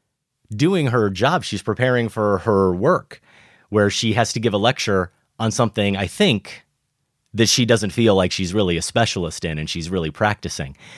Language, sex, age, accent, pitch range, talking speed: English, male, 30-49, American, 95-120 Hz, 180 wpm